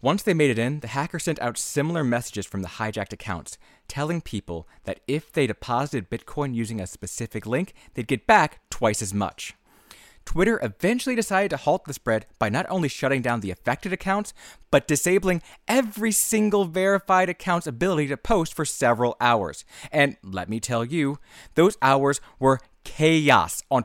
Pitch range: 110-160 Hz